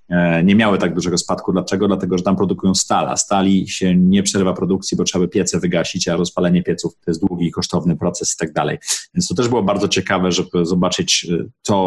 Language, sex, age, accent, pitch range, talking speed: Polish, male, 30-49, native, 95-110 Hz, 215 wpm